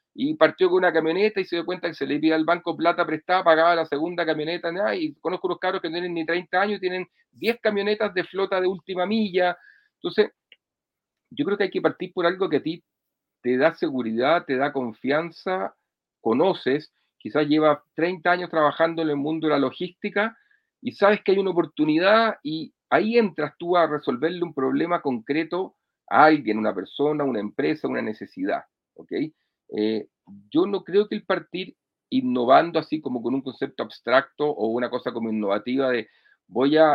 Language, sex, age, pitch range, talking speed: Spanish, male, 40-59, 140-190 Hz, 185 wpm